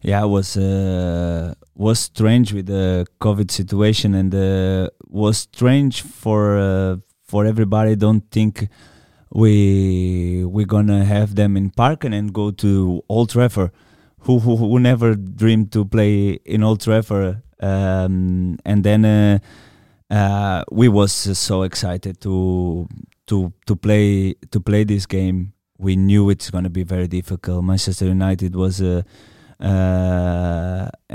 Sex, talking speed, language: male, 140 wpm, Danish